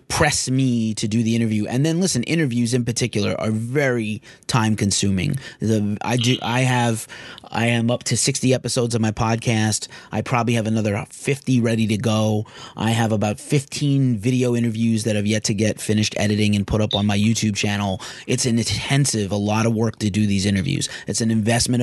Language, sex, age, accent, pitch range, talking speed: English, male, 30-49, American, 105-125 Hz, 200 wpm